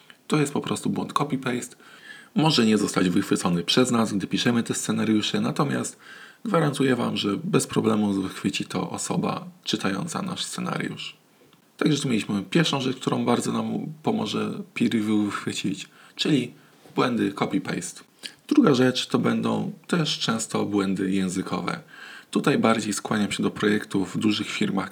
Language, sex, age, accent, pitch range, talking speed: Polish, male, 20-39, native, 95-140 Hz, 140 wpm